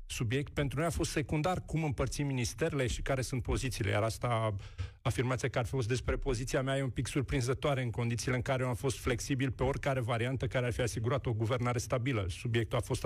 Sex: male